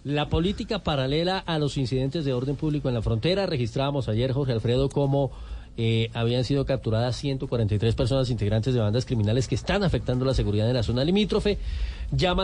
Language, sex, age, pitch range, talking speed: Spanish, male, 30-49, 120-155 Hz, 180 wpm